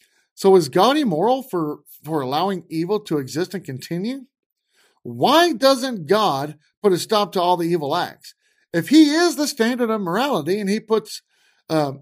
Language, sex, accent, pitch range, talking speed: English, male, American, 145-225 Hz, 170 wpm